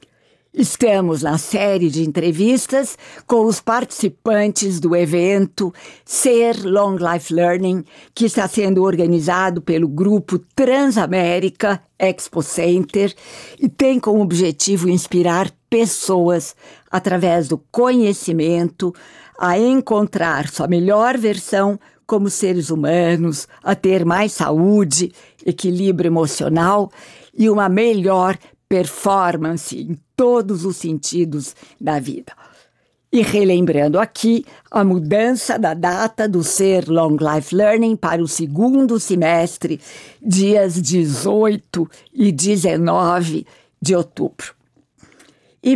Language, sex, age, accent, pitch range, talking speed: Portuguese, female, 60-79, Brazilian, 175-215 Hz, 105 wpm